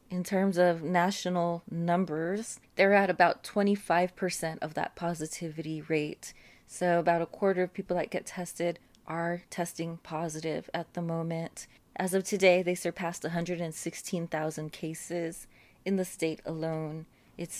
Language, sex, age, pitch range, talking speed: English, female, 20-39, 165-200 Hz, 140 wpm